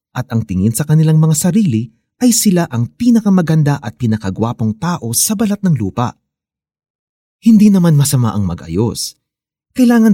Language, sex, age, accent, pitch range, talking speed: Filipino, male, 30-49, native, 110-170 Hz, 140 wpm